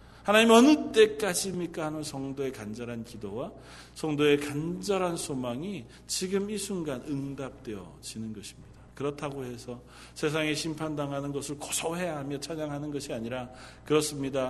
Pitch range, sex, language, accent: 120-165 Hz, male, Korean, native